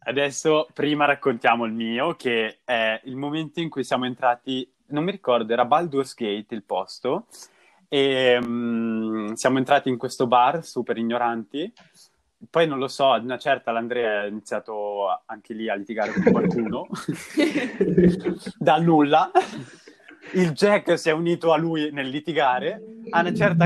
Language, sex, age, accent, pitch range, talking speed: Italian, male, 20-39, native, 125-170 Hz, 150 wpm